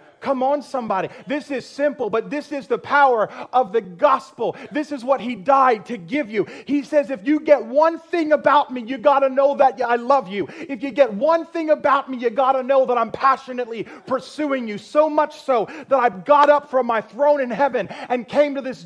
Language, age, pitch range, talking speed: English, 40-59, 170-275 Hz, 225 wpm